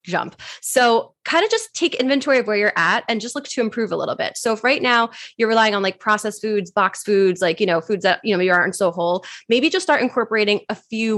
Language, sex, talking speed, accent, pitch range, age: English, female, 260 wpm, American, 185-230 Hz, 20-39